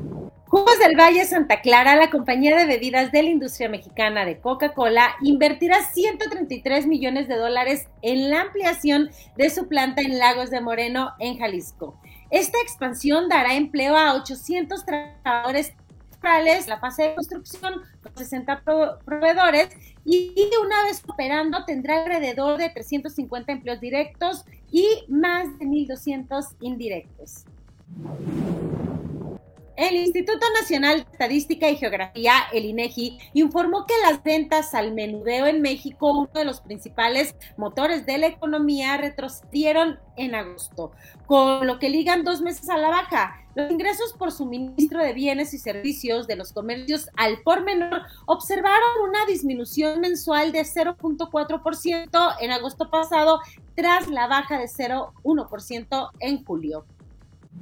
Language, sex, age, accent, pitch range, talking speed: Spanish, female, 30-49, Mexican, 255-335 Hz, 135 wpm